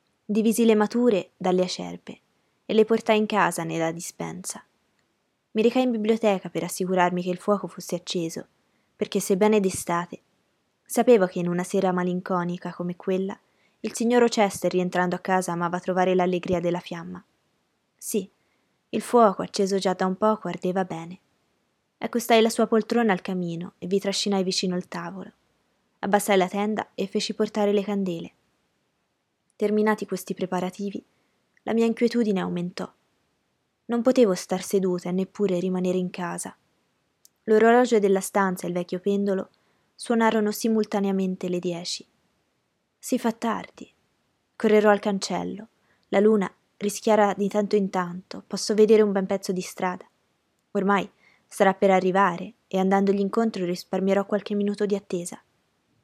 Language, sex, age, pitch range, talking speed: Italian, female, 20-39, 180-215 Hz, 145 wpm